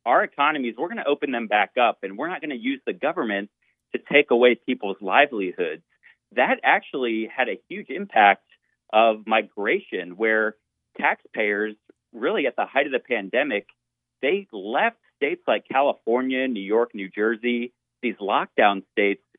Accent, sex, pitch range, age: American, male, 110-150 Hz, 40-59